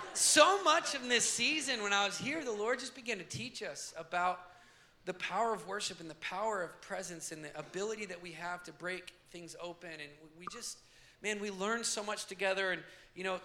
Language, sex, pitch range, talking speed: English, male, 160-195 Hz, 215 wpm